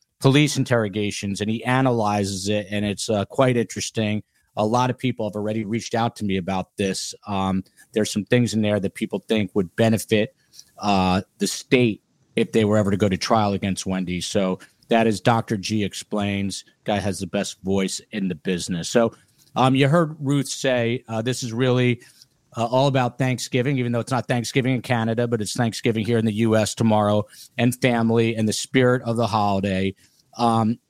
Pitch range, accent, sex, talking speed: 100-125 Hz, American, male, 195 wpm